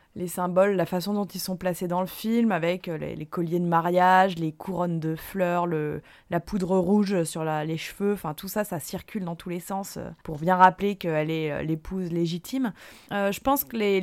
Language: French